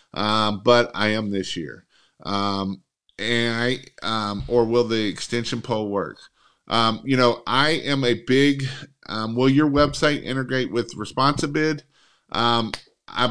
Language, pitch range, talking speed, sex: English, 110-130 Hz, 150 wpm, male